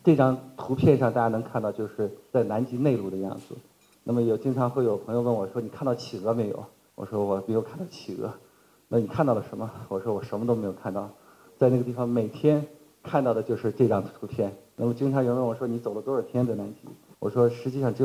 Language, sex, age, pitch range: Chinese, male, 50-69, 110-135 Hz